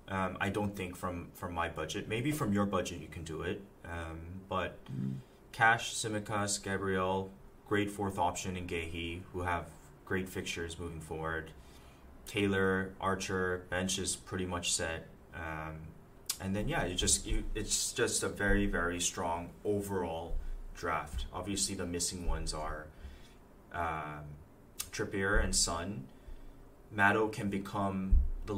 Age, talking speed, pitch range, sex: 20-39, 140 wpm, 85-100 Hz, male